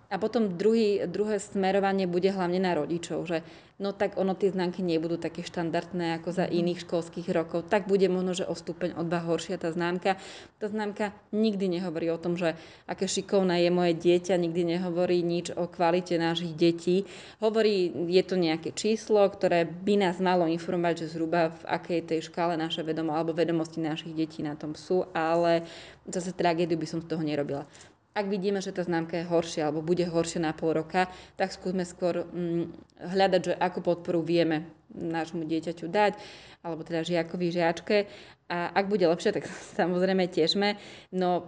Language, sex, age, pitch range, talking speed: Slovak, female, 20-39, 165-185 Hz, 180 wpm